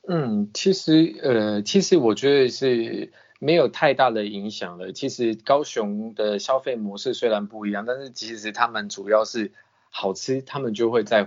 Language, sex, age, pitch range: Chinese, male, 20-39, 105-135 Hz